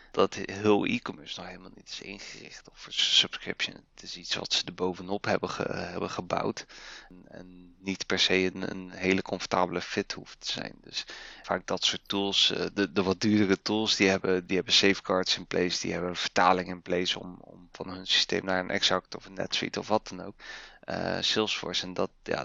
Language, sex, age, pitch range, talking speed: Dutch, male, 20-39, 90-100 Hz, 200 wpm